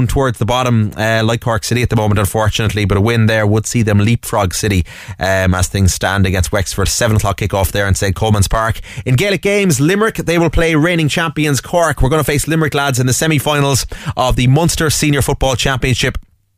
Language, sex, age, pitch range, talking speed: English, male, 20-39, 105-130 Hz, 215 wpm